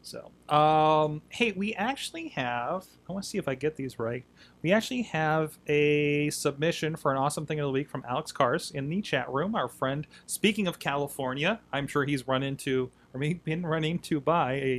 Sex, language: male, English